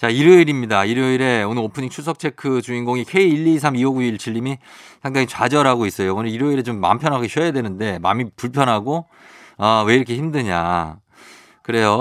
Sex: male